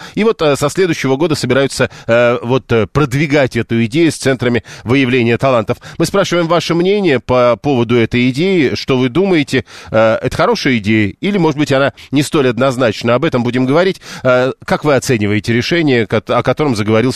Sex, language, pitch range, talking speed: male, Russian, 120-150 Hz, 160 wpm